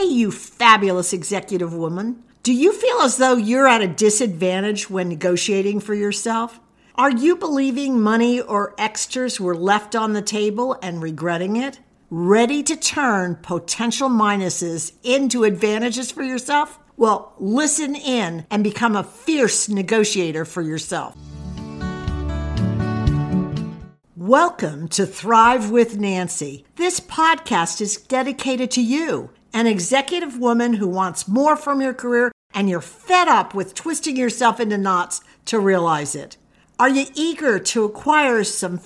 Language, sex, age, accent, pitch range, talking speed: English, female, 60-79, American, 195-260 Hz, 135 wpm